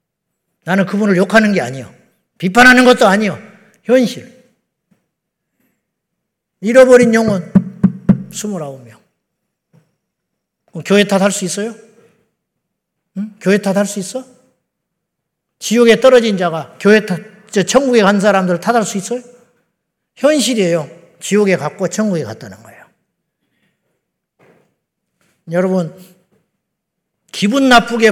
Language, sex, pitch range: Korean, male, 175-225 Hz